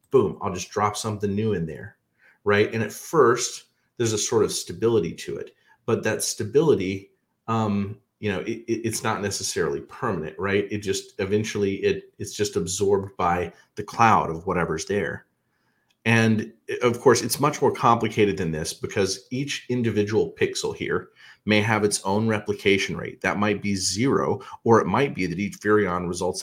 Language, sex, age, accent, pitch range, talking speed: English, male, 30-49, American, 95-120 Hz, 175 wpm